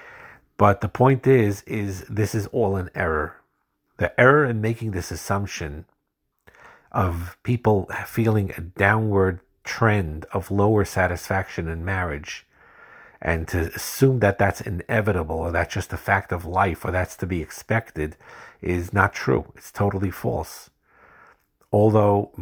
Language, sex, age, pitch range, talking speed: English, male, 50-69, 85-110 Hz, 140 wpm